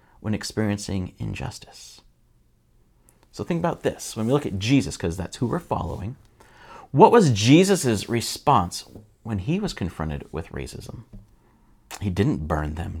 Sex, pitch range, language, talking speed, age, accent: male, 100-135 Hz, English, 145 wpm, 30-49, American